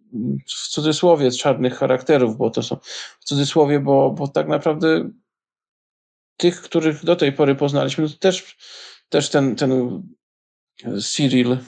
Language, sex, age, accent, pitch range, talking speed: Polish, male, 40-59, native, 130-150 Hz, 130 wpm